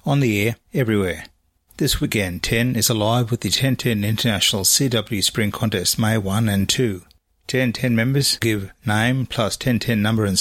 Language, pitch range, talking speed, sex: English, 95-120 Hz, 160 wpm, male